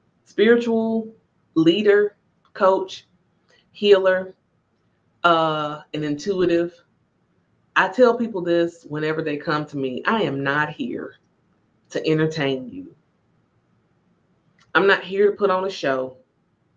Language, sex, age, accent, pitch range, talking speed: English, female, 30-49, American, 145-195 Hz, 110 wpm